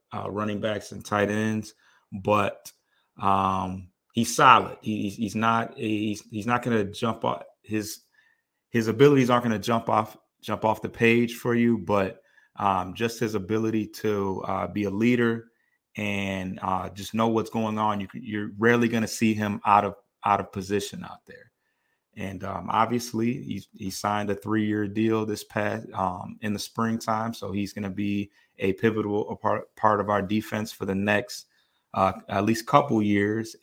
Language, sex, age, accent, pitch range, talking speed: English, male, 30-49, American, 100-110 Hz, 175 wpm